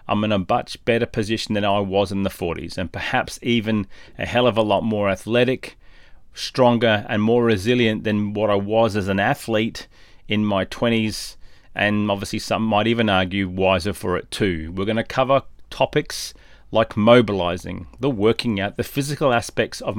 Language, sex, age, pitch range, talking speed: English, male, 30-49, 95-120 Hz, 180 wpm